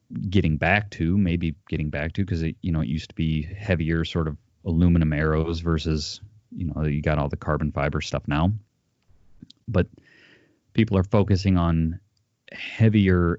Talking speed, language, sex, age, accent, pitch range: 165 wpm, English, male, 30-49, American, 80-100 Hz